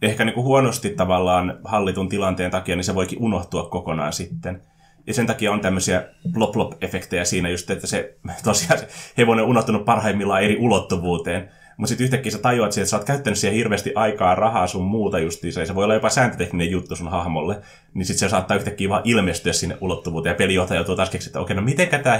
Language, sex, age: Finnish, male, 20-39